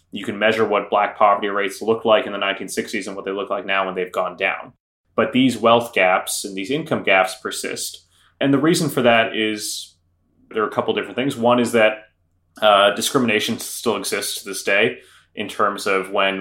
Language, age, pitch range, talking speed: English, 20-39, 95-115 Hz, 210 wpm